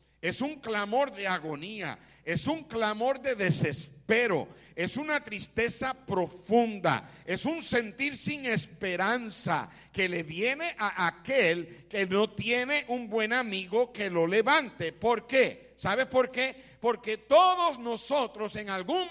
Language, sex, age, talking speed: Spanish, male, 60-79, 135 wpm